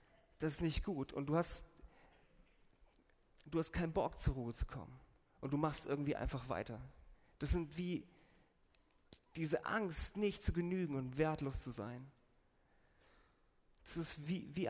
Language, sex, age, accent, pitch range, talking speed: German, male, 40-59, German, 125-170 Hz, 150 wpm